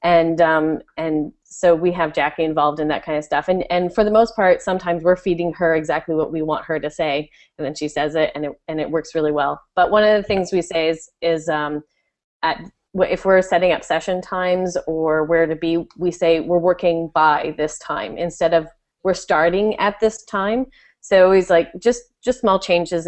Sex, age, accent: female, 30-49, American